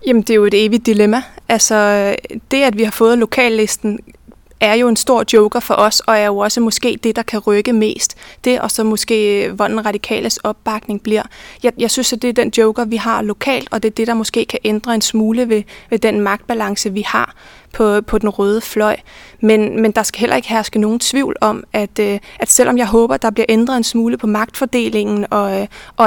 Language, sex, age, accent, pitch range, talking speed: Danish, female, 20-39, native, 215-240 Hz, 220 wpm